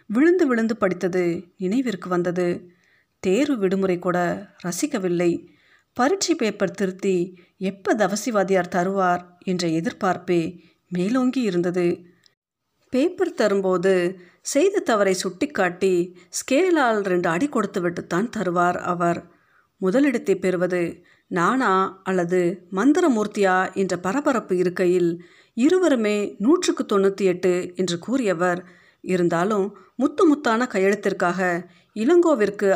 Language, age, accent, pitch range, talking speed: Tamil, 50-69, native, 180-225 Hz, 85 wpm